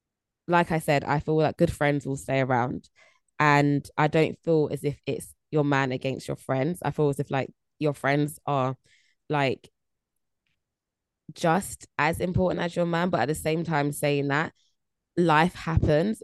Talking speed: 175 wpm